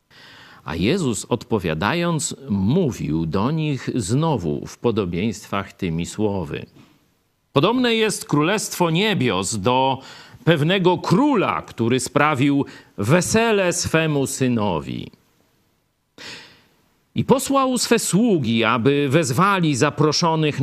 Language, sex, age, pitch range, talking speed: Polish, male, 50-69, 120-170 Hz, 85 wpm